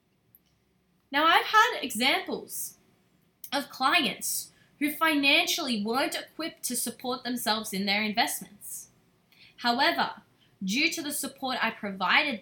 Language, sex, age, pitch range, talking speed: English, female, 20-39, 190-260 Hz, 110 wpm